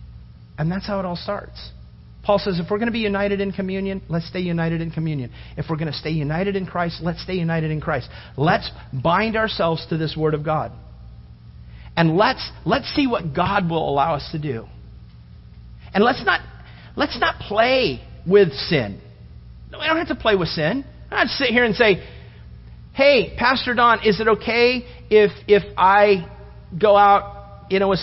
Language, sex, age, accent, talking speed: English, male, 40-59, American, 195 wpm